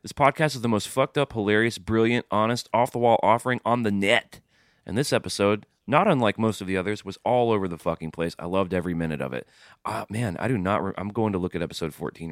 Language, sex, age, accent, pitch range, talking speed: English, male, 30-49, American, 90-115 Hz, 250 wpm